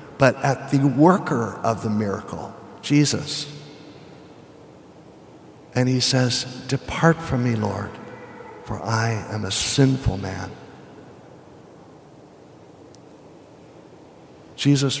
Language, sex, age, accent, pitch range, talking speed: English, male, 60-79, American, 110-145 Hz, 90 wpm